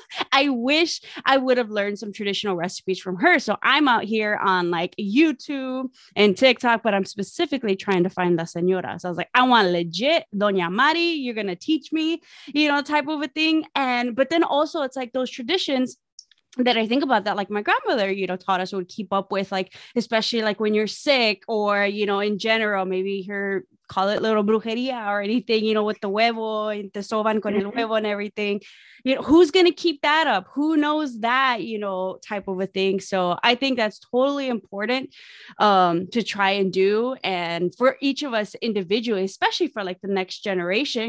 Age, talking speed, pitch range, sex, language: 20-39, 205 wpm, 195-265 Hz, female, English